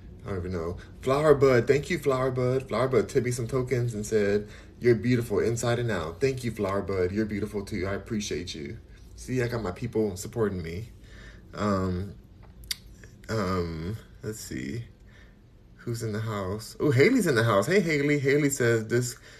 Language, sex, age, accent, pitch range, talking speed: English, male, 20-39, American, 105-125 Hz, 180 wpm